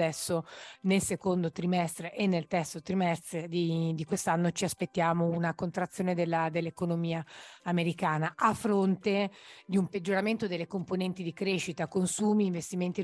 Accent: native